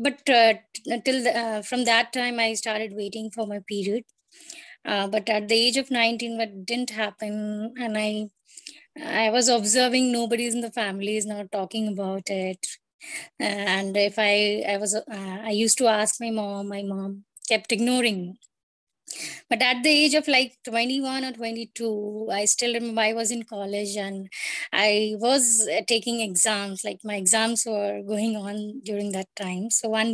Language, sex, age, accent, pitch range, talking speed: English, female, 20-39, Indian, 205-245 Hz, 175 wpm